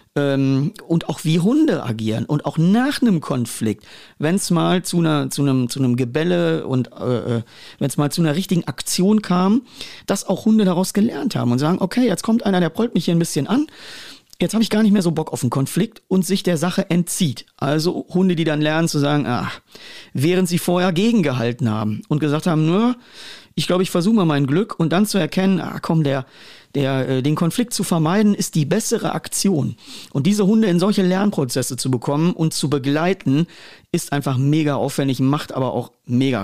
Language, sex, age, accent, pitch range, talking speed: German, male, 40-59, German, 140-180 Hz, 205 wpm